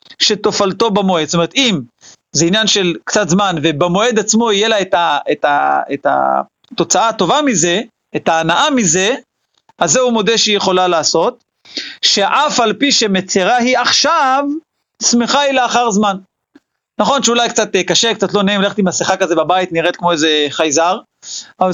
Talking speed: 150 wpm